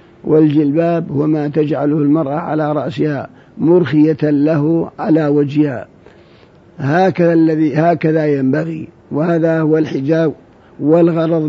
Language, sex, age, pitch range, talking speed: Arabic, male, 50-69, 145-165 Hz, 95 wpm